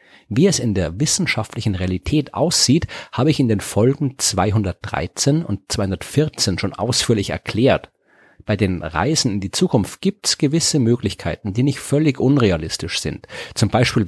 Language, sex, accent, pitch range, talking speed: German, male, German, 100-145 Hz, 150 wpm